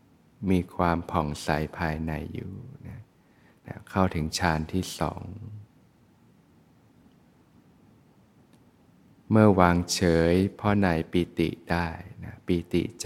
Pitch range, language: 85-100 Hz, Thai